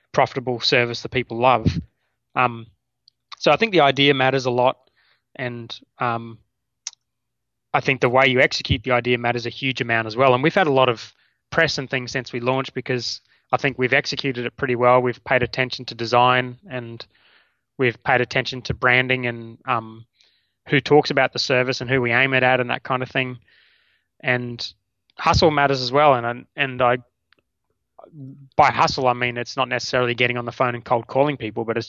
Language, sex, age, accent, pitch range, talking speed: English, male, 20-39, Australian, 120-135 Hz, 200 wpm